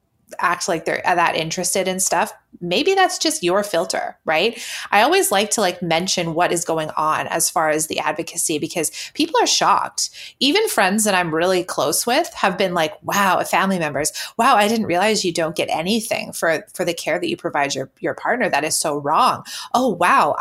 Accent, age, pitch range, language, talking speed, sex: American, 20-39, 165-215 Hz, English, 205 wpm, female